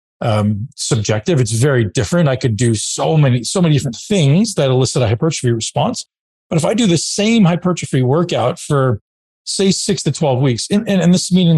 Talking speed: 195 wpm